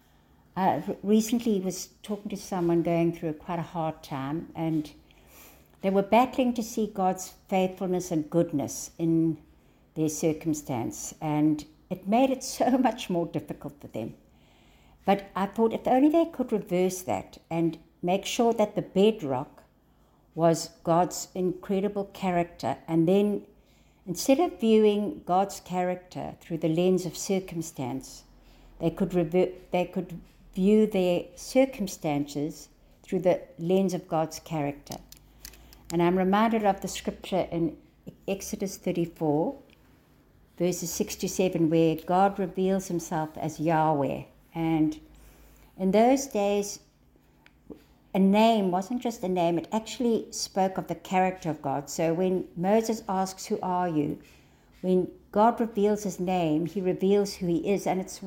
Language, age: English, 60-79